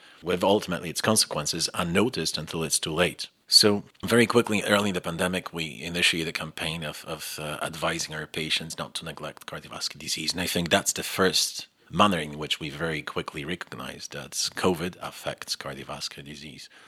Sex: male